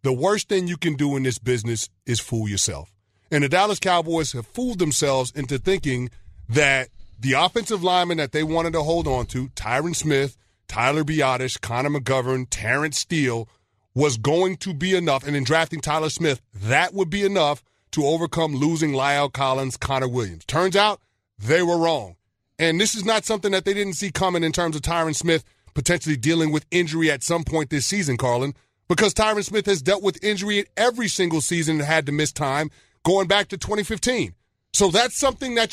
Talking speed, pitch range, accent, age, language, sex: 195 wpm, 135-195 Hz, American, 30-49, English, male